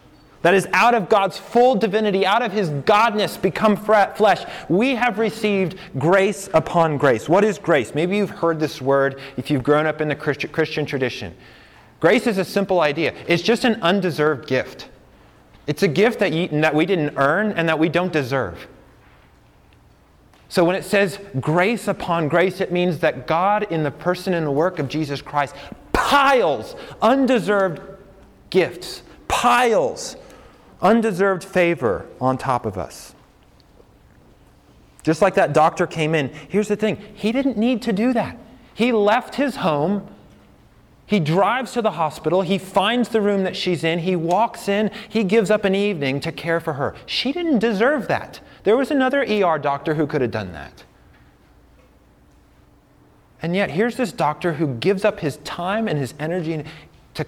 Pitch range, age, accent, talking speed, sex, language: 150-210 Hz, 30-49, American, 170 wpm, male, English